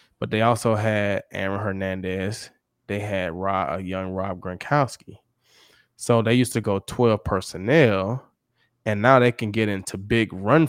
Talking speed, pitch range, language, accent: 150 wpm, 100-125 Hz, English, American